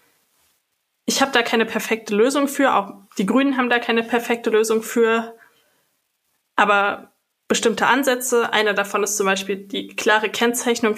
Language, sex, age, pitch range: German, female, 20-39, 210-235 Hz